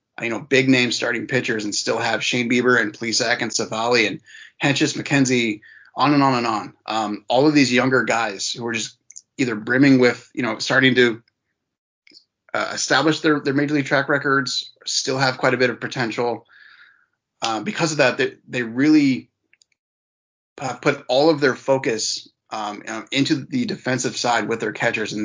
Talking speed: 185 wpm